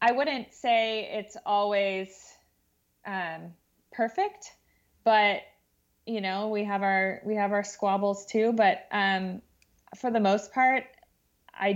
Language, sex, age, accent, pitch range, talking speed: English, female, 20-39, American, 180-210 Hz, 130 wpm